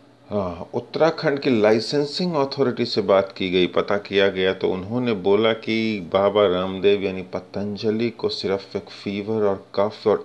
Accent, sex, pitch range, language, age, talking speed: native, male, 90-105 Hz, Hindi, 30-49, 150 wpm